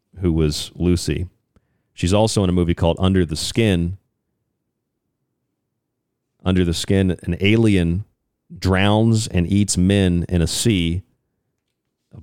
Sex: male